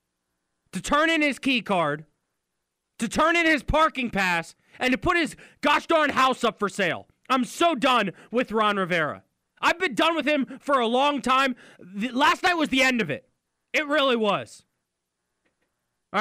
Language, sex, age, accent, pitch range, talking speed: English, male, 20-39, American, 195-295 Hz, 180 wpm